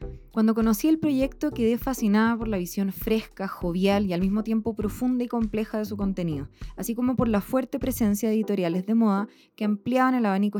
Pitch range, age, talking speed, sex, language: 170-220 Hz, 20-39, 200 wpm, female, Spanish